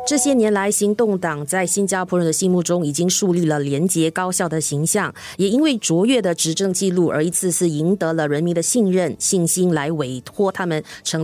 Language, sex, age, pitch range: Chinese, female, 30-49, 160-205 Hz